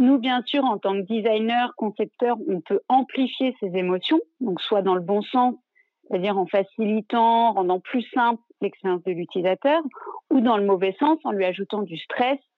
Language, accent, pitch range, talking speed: French, French, 215-285 Hz, 180 wpm